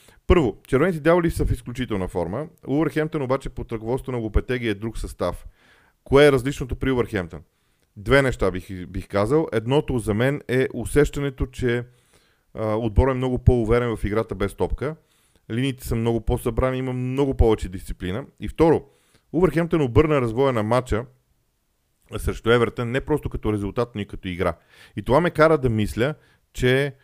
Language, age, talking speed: Bulgarian, 40-59, 160 wpm